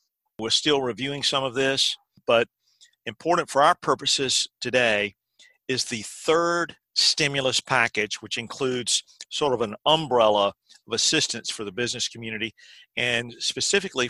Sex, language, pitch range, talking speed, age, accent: male, English, 115-135 Hz, 130 wpm, 50-69, American